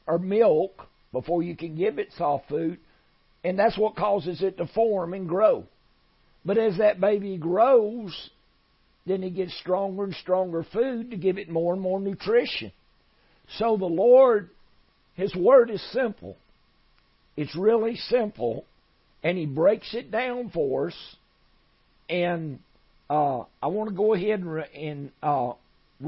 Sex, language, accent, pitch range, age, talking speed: male, English, American, 150-200 Hz, 50-69, 145 wpm